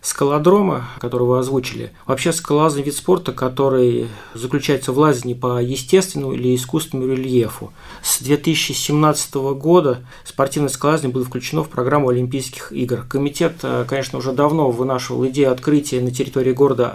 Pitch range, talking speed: 125-145 Hz, 135 wpm